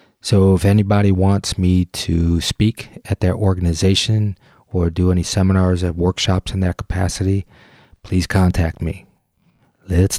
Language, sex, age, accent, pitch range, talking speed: English, male, 30-49, American, 85-100 Hz, 135 wpm